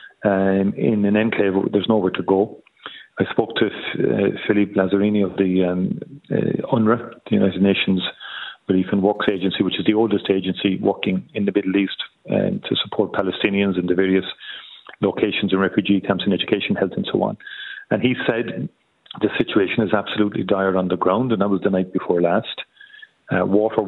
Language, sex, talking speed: English, male, 185 wpm